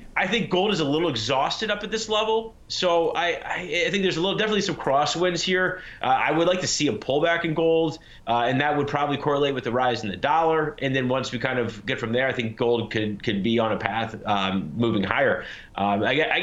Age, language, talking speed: 30-49, English, 250 wpm